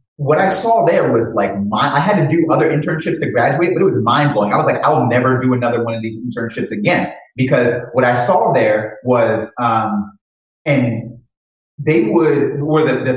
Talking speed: 200 wpm